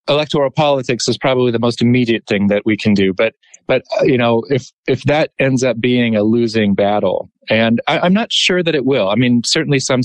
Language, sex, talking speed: English, male, 225 wpm